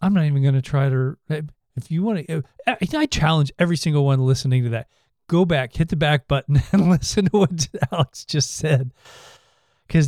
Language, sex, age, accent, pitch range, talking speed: English, male, 40-59, American, 120-145 Hz, 195 wpm